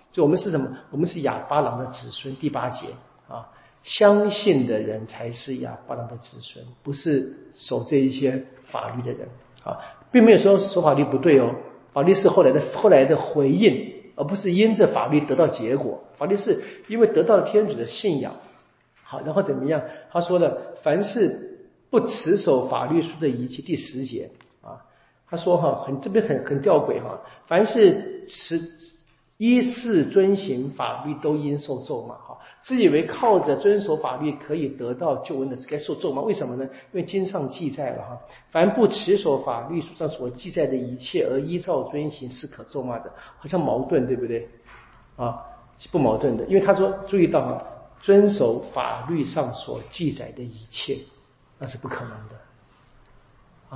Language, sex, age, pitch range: Chinese, male, 50-69, 130-195 Hz